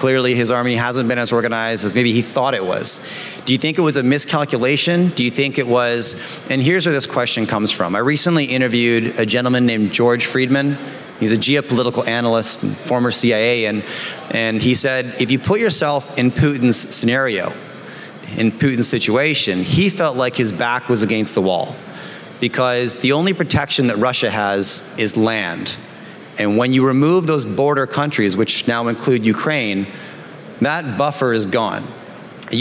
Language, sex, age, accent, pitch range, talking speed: English, male, 30-49, American, 115-135 Hz, 175 wpm